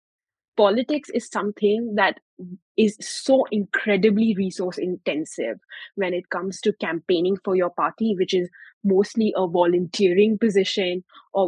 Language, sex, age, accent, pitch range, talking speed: English, female, 20-39, Indian, 180-210 Hz, 125 wpm